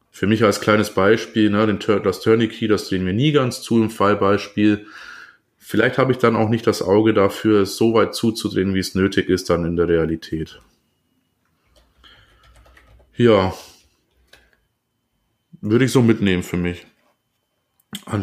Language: German